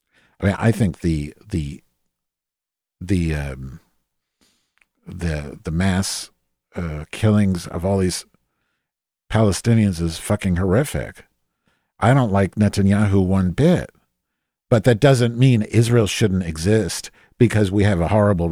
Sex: male